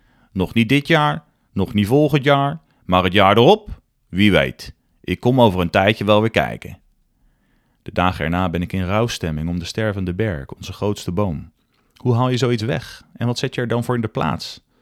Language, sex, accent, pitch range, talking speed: Dutch, male, Dutch, 90-115 Hz, 205 wpm